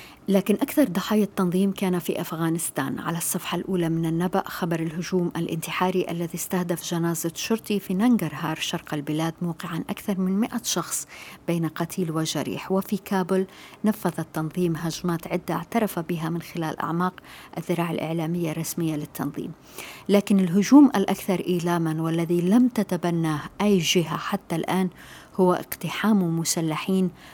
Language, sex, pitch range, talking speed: Arabic, female, 165-195 Hz, 130 wpm